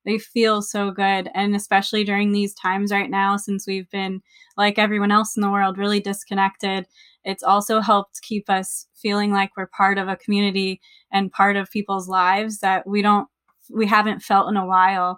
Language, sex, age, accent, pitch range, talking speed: English, female, 20-39, American, 195-220 Hz, 190 wpm